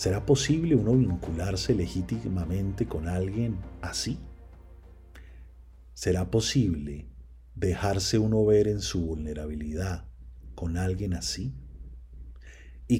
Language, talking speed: Spanish, 90 wpm